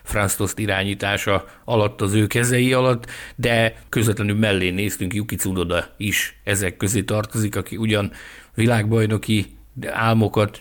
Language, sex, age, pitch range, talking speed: Hungarian, male, 60-79, 95-120 Hz, 120 wpm